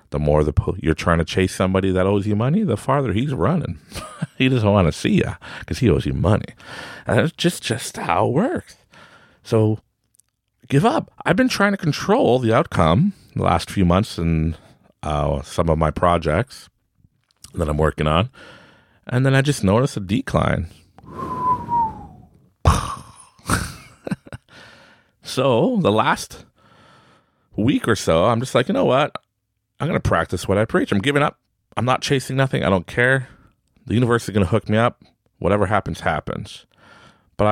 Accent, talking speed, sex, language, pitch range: American, 170 wpm, male, English, 80-125 Hz